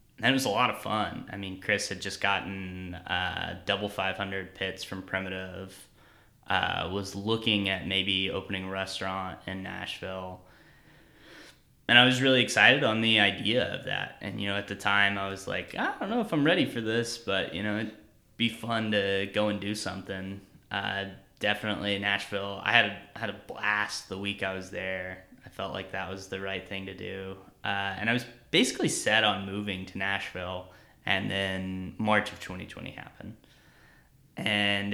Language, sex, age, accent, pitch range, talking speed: English, male, 10-29, American, 95-110 Hz, 190 wpm